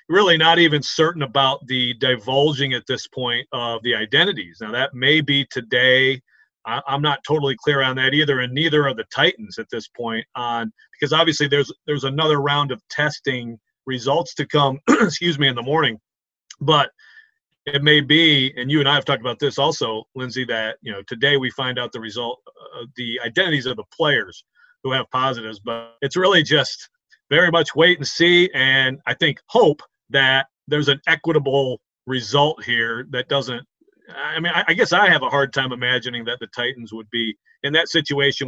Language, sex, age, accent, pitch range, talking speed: English, male, 30-49, American, 125-155 Hz, 190 wpm